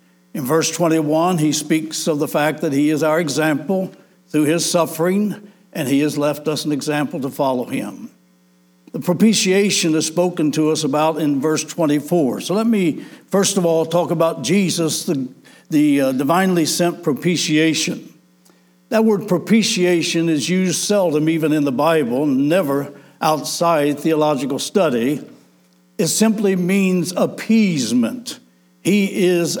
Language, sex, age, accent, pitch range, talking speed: English, male, 60-79, American, 150-185 Hz, 145 wpm